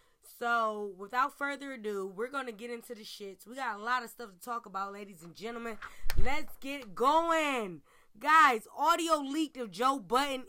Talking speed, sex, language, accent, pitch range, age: 185 wpm, female, English, American, 195-260 Hz, 20-39